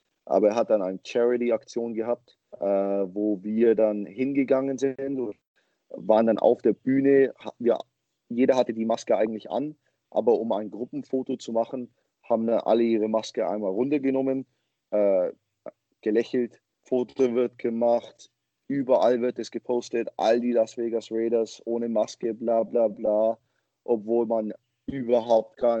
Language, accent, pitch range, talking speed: German, German, 110-125 Hz, 145 wpm